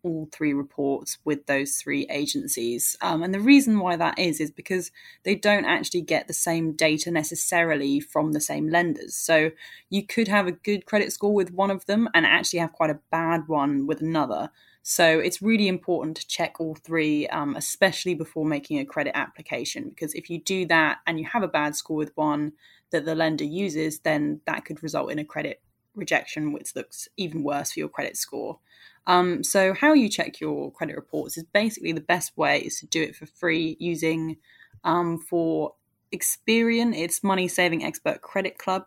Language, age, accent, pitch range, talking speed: English, 10-29, British, 155-190 Hz, 195 wpm